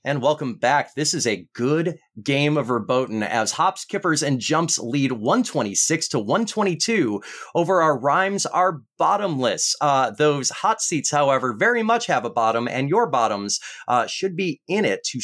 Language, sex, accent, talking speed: English, male, American, 170 wpm